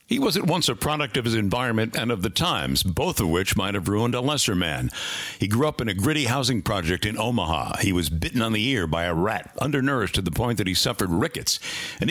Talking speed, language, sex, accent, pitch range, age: 250 wpm, English, male, American, 100-140 Hz, 60-79